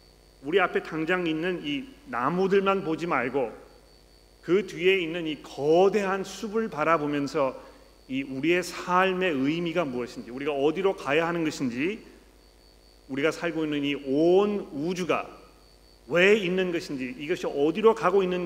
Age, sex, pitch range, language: 40-59, male, 130-170 Hz, Korean